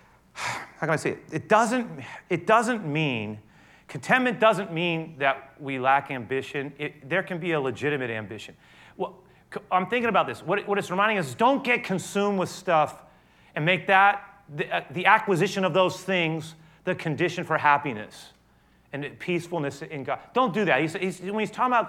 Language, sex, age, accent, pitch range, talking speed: English, male, 30-49, American, 120-190 Hz, 185 wpm